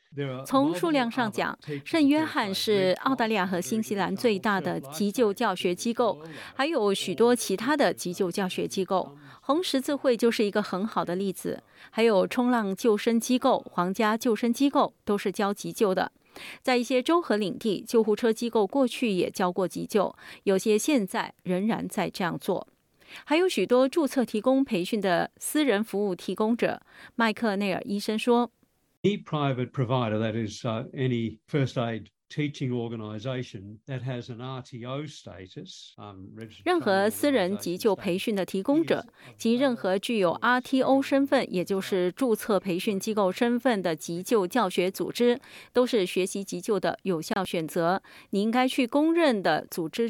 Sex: female